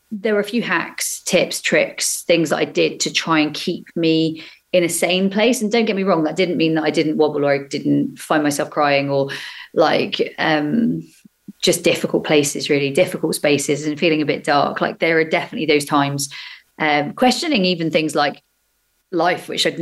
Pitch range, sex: 150-190 Hz, female